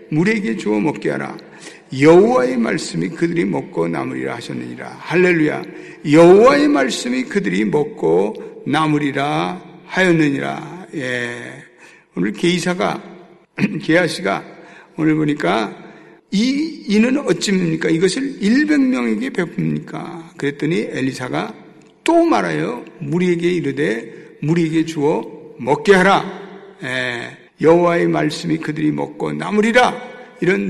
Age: 60-79